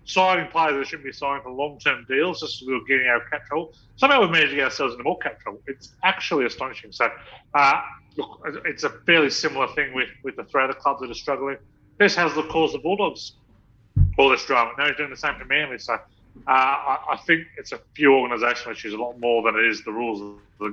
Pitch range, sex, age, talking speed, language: 125-160 Hz, male, 30-49, 235 wpm, English